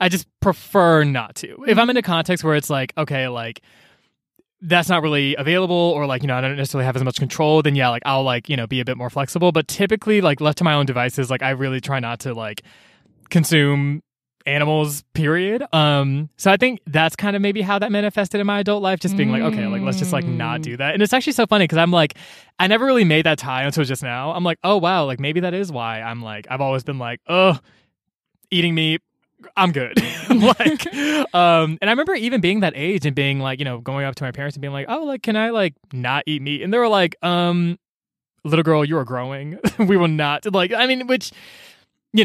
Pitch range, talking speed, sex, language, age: 140-195 Hz, 245 wpm, male, English, 20-39